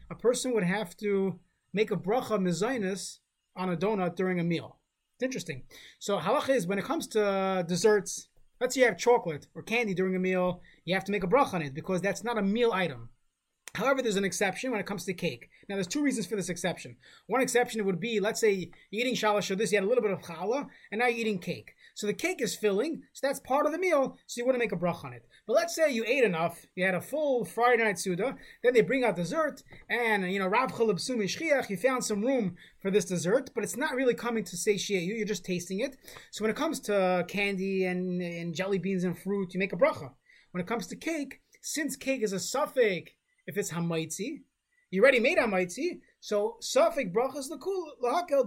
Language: English